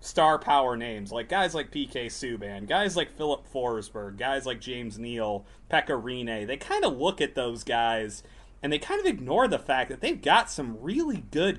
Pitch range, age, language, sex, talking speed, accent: 115-155 Hz, 30-49, English, male, 195 wpm, American